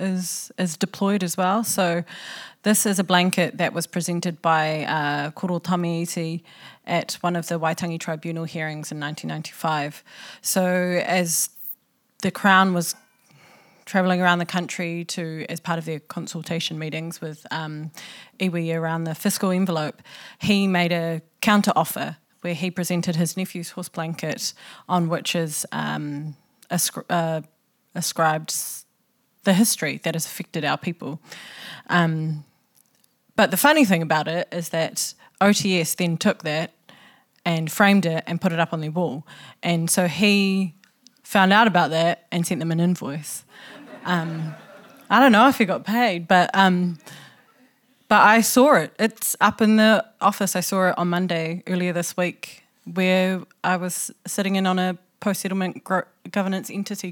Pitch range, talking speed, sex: 165-195 Hz, 155 wpm, female